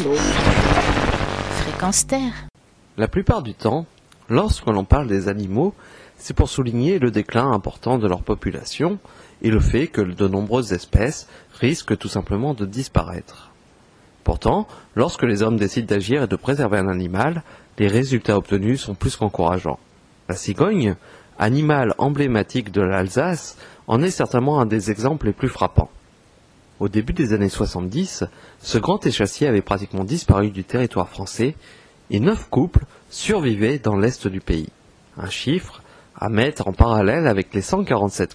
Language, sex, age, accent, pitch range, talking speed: French, male, 30-49, French, 100-130 Hz, 145 wpm